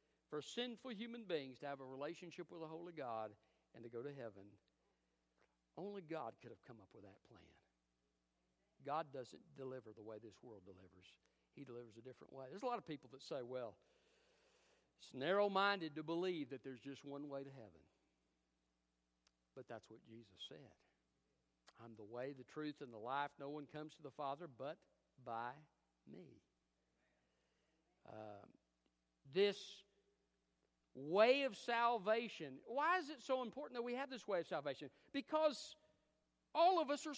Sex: male